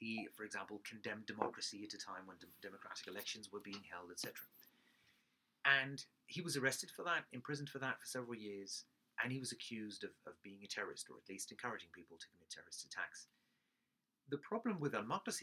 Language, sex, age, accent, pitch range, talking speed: English, male, 30-49, British, 120-160 Hz, 195 wpm